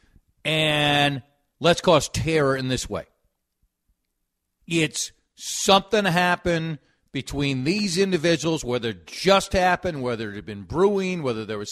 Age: 50-69